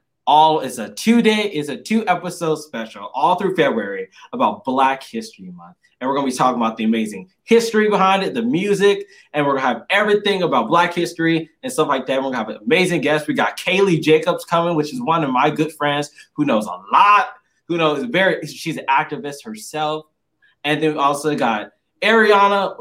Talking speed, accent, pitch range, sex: 195 wpm, American, 135-200 Hz, male